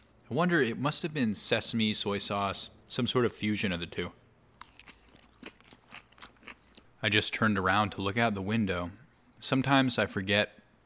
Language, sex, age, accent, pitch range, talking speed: English, male, 30-49, American, 100-120 Hz, 155 wpm